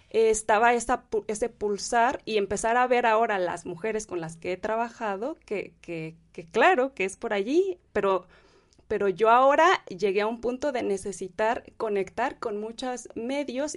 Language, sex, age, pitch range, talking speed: Spanish, female, 30-49, 195-260 Hz, 165 wpm